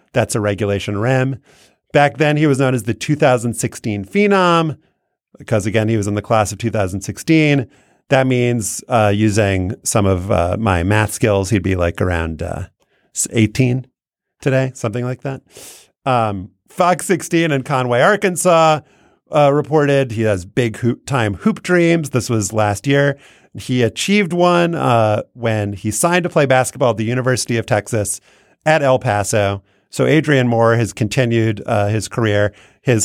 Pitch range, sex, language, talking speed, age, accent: 105-140 Hz, male, English, 160 wpm, 30-49, American